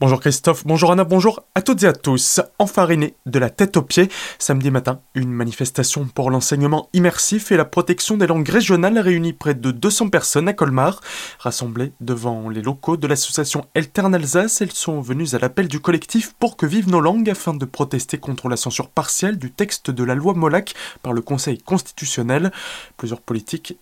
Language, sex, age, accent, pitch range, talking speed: French, male, 20-39, French, 125-175 Hz, 195 wpm